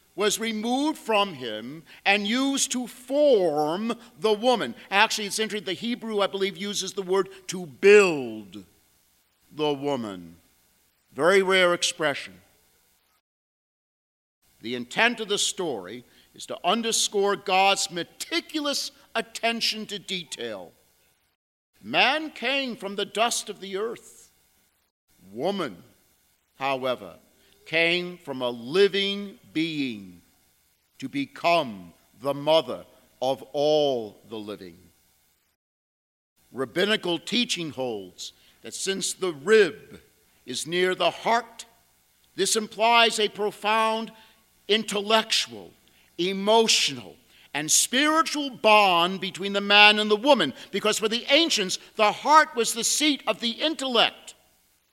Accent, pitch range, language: American, 155-230 Hz, English